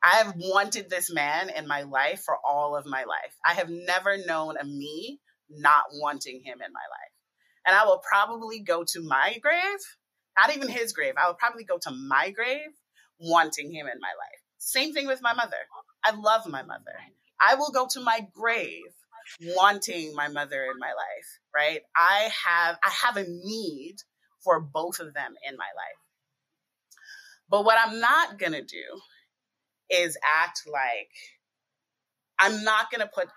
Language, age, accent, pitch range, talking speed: English, 30-49, American, 150-230 Hz, 175 wpm